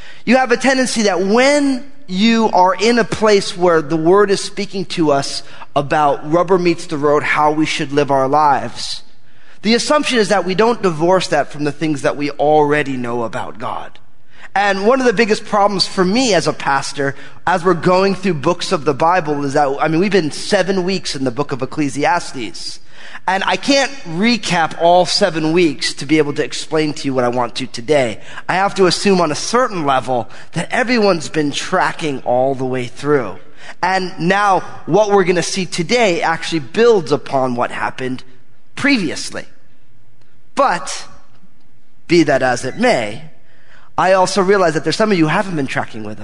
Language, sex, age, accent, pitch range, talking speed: English, male, 30-49, American, 140-195 Hz, 190 wpm